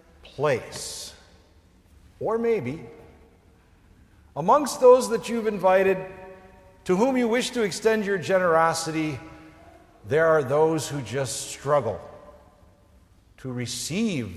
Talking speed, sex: 100 wpm, male